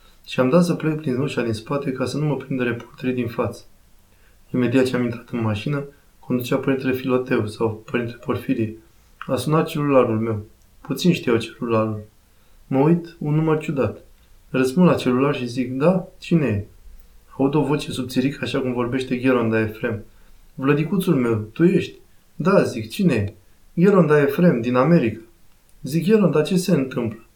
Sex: male